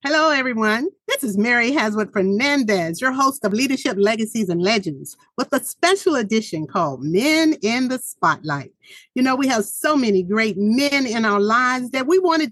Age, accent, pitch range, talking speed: 50-69, American, 205-280 Hz, 175 wpm